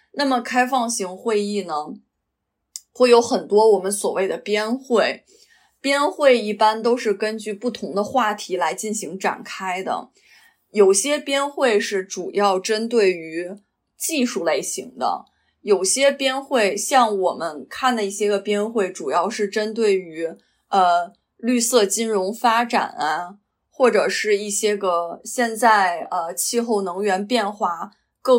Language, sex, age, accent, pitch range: Chinese, female, 20-39, native, 195-250 Hz